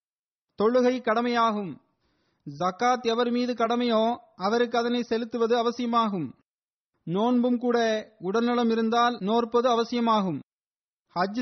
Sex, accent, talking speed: male, native, 90 wpm